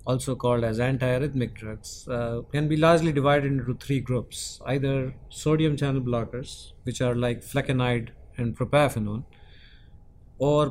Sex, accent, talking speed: male, Indian, 135 wpm